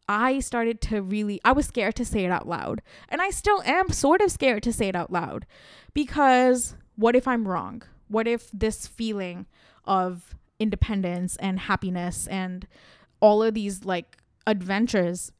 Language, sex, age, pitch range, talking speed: English, female, 20-39, 190-245 Hz, 170 wpm